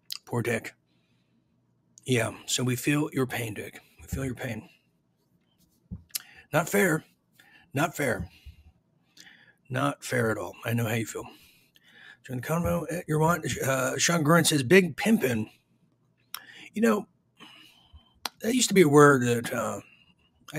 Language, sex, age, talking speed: English, male, 40-59, 140 wpm